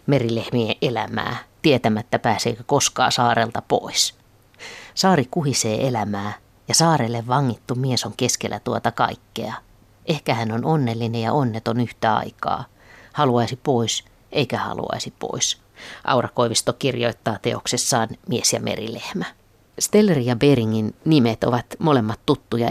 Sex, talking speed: female, 115 wpm